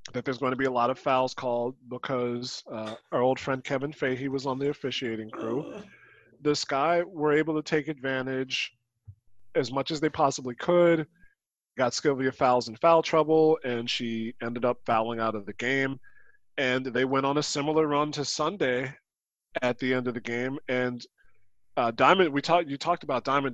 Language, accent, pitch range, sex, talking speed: English, American, 120-155 Hz, male, 190 wpm